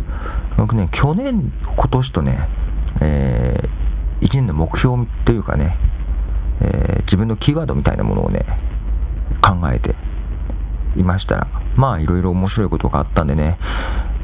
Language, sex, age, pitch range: Japanese, male, 40-59, 65-100 Hz